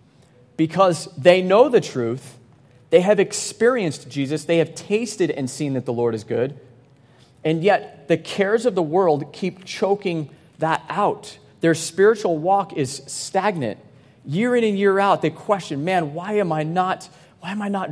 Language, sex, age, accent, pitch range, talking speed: English, male, 30-49, American, 125-170 Hz, 170 wpm